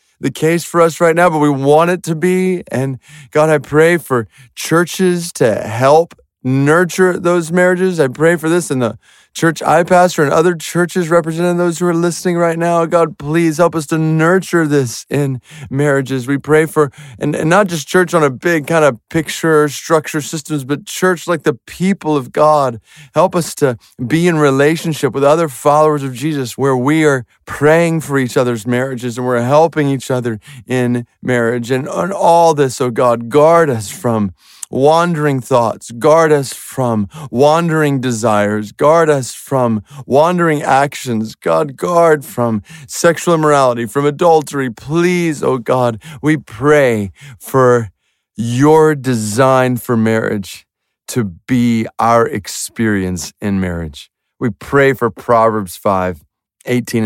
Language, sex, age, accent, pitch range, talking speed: English, male, 30-49, American, 115-160 Hz, 155 wpm